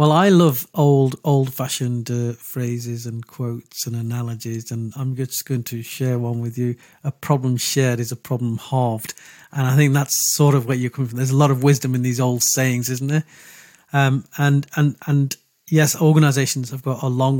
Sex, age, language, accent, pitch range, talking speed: male, 40-59, English, British, 125-145 Hz, 205 wpm